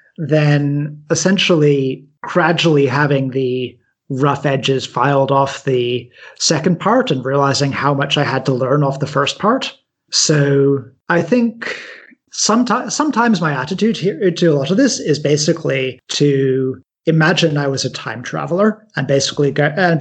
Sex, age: male, 30-49